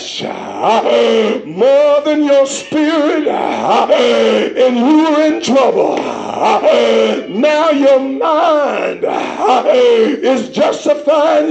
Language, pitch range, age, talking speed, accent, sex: English, 275-415 Hz, 50-69, 75 wpm, American, male